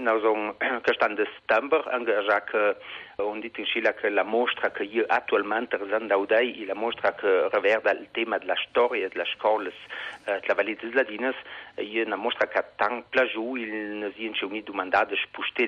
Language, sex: Italian, male